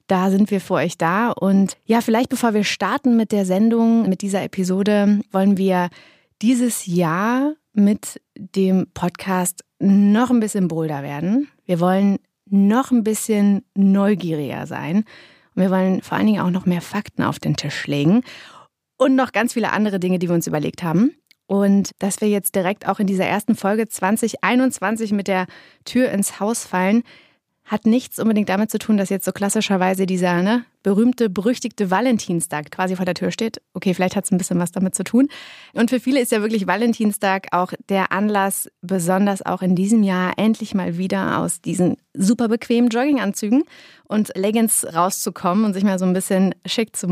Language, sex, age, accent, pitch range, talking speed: German, female, 30-49, German, 185-225 Hz, 180 wpm